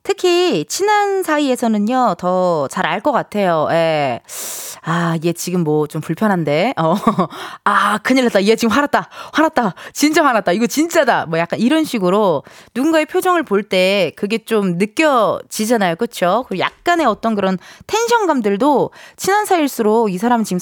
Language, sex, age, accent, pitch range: Korean, female, 20-39, native, 190-305 Hz